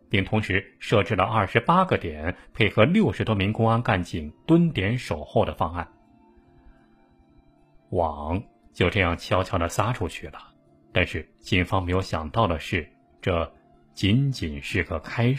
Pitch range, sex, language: 90-125 Hz, male, Chinese